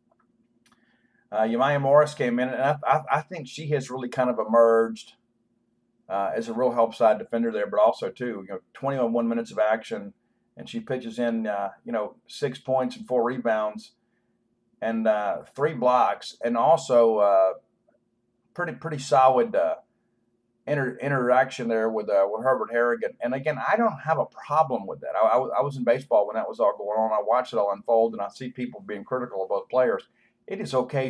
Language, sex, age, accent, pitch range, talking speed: English, male, 40-59, American, 115-135 Hz, 195 wpm